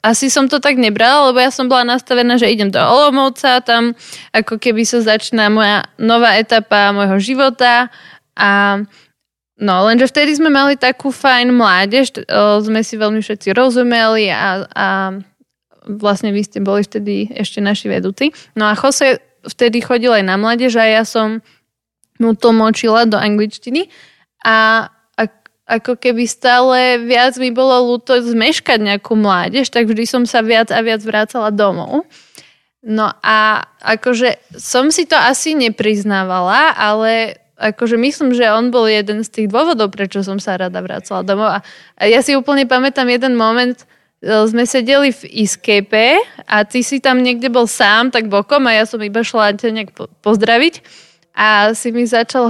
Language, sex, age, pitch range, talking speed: Slovak, female, 20-39, 215-250 Hz, 160 wpm